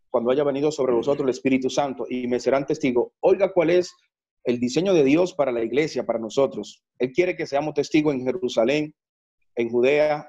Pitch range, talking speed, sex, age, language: 130-170 Hz, 190 wpm, male, 40-59, English